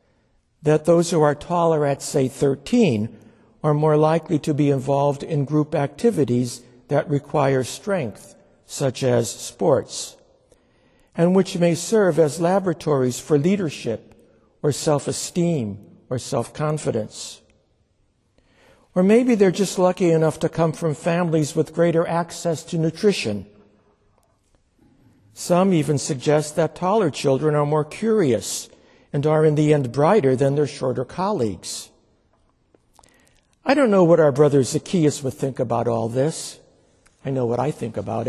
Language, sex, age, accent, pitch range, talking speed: English, male, 60-79, American, 125-165 Hz, 135 wpm